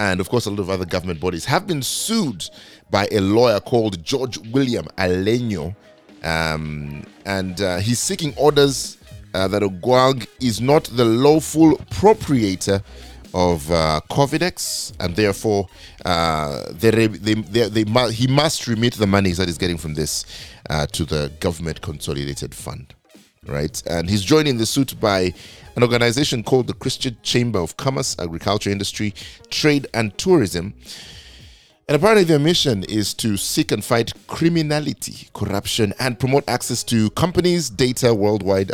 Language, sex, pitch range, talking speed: English, male, 90-125 Hz, 155 wpm